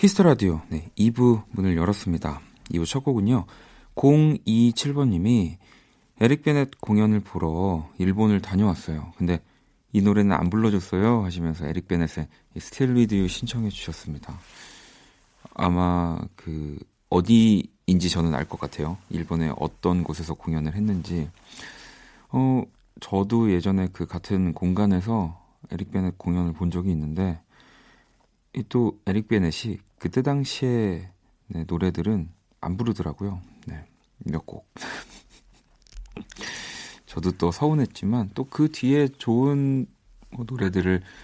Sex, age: male, 40-59